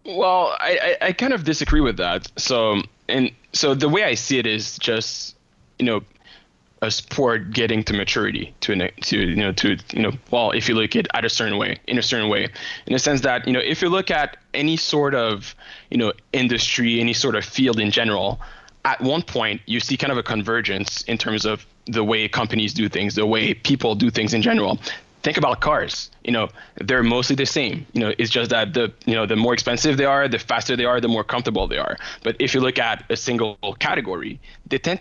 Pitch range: 110-135 Hz